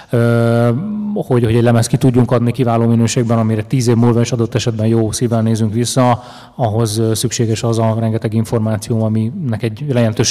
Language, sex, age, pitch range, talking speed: Hungarian, male, 30-49, 115-125 Hz, 170 wpm